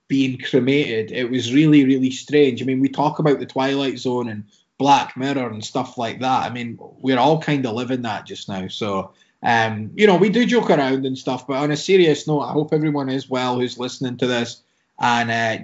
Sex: male